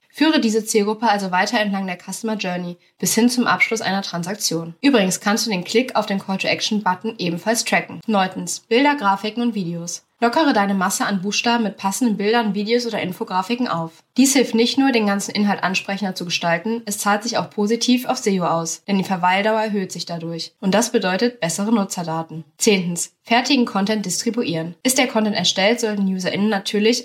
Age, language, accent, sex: 20-39, German, German, female